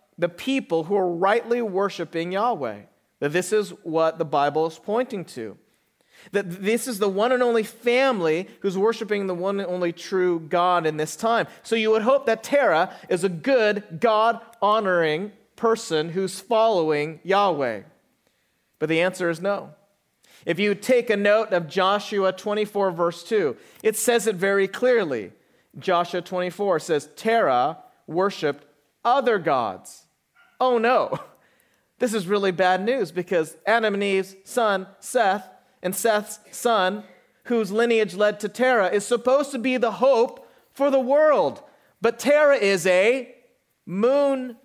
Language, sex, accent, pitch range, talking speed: English, male, American, 180-235 Hz, 150 wpm